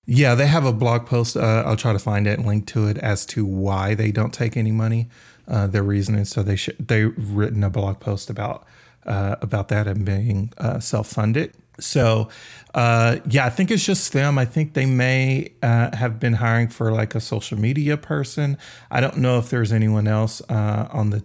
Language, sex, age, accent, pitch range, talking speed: English, male, 30-49, American, 105-125 Hz, 215 wpm